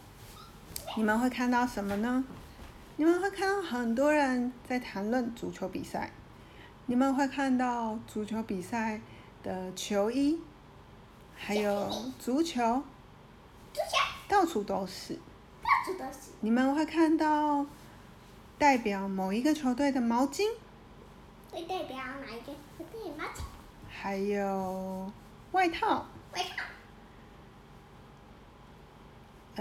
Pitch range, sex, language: 205-290 Hz, female, Chinese